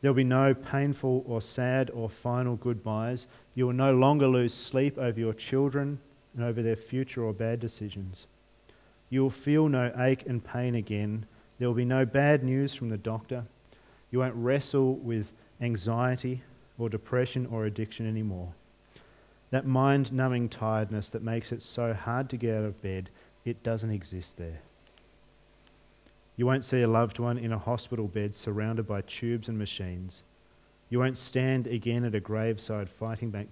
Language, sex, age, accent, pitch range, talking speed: English, male, 40-59, Australian, 105-125 Hz, 170 wpm